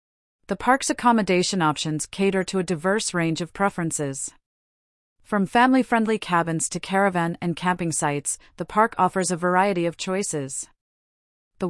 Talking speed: 140 wpm